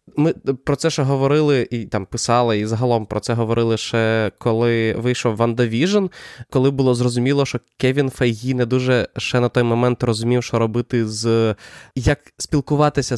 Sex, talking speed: male, 160 wpm